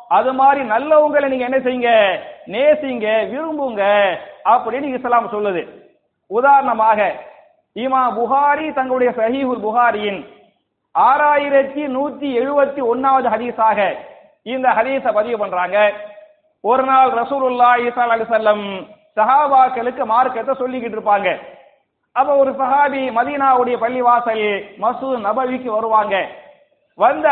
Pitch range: 235-290 Hz